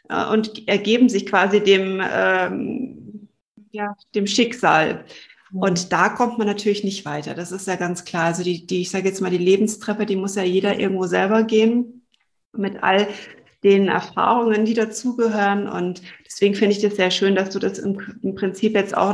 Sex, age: female, 30-49